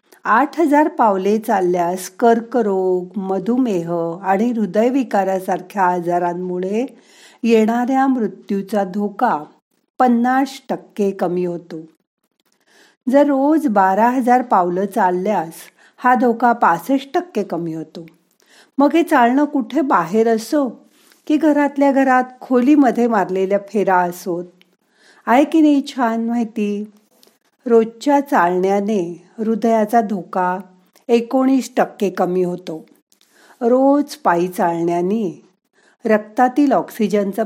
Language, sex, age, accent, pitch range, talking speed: Marathi, female, 50-69, native, 185-255 Hz, 90 wpm